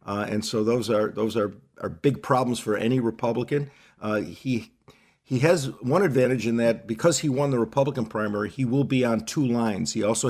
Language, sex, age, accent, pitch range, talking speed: English, male, 50-69, American, 115-140 Hz, 205 wpm